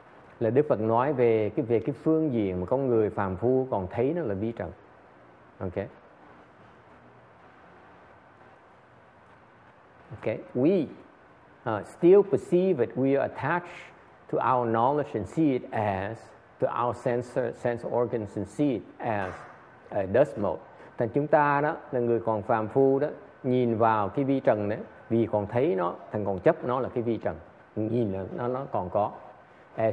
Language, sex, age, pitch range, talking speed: English, male, 50-69, 115-165 Hz, 170 wpm